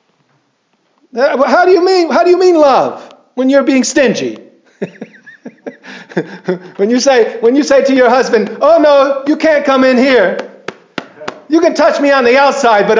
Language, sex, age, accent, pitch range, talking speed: English, male, 50-69, American, 180-275 Hz, 170 wpm